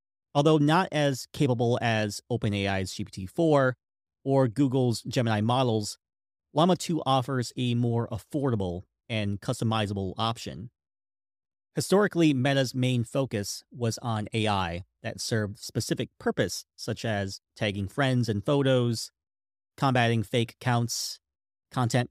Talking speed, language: 110 wpm, English